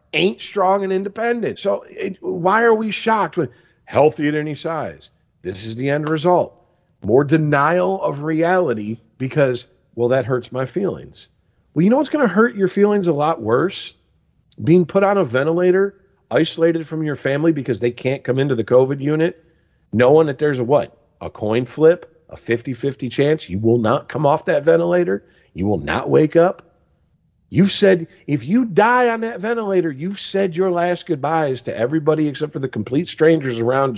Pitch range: 140-195 Hz